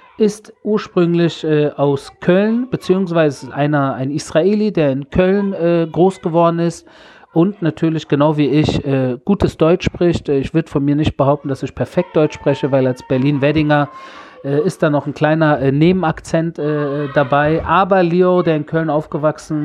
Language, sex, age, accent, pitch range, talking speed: German, male, 40-59, German, 145-165 Hz, 160 wpm